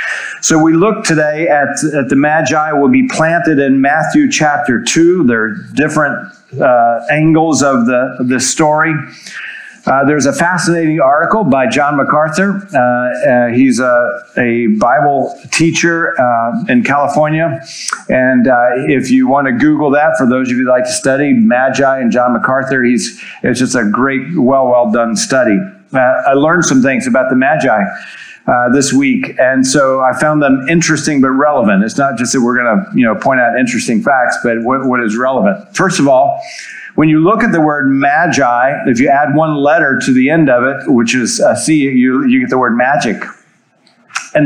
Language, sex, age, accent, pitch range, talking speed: English, male, 50-69, American, 130-165 Hz, 185 wpm